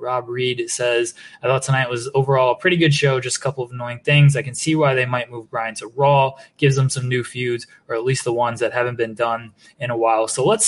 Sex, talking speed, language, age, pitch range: male, 265 wpm, English, 20-39, 130-165 Hz